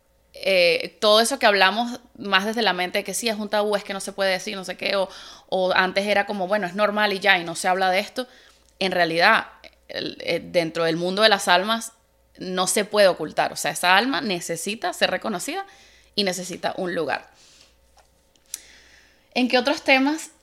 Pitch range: 185-220 Hz